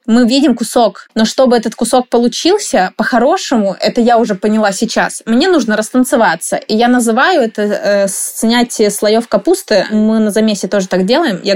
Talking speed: 165 wpm